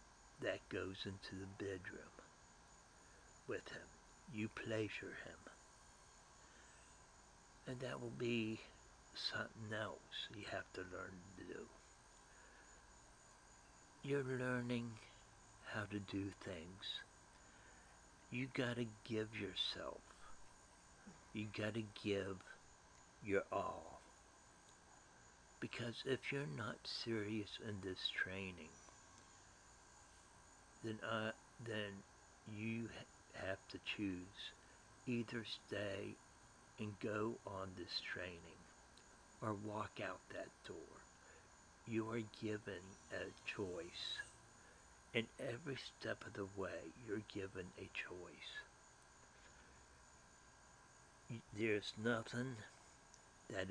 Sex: male